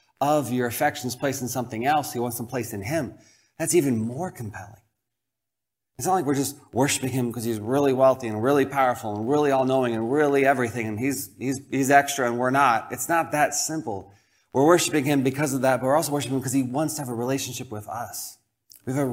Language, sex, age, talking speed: English, male, 30-49, 225 wpm